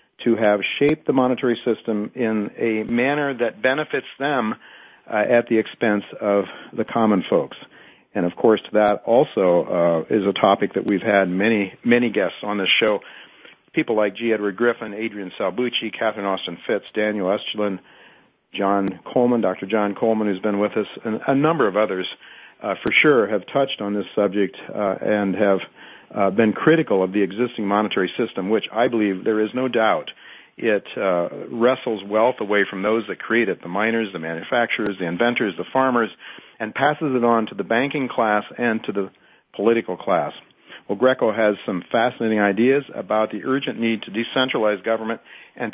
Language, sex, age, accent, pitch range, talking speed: English, male, 50-69, American, 100-120 Hz, 175 wpm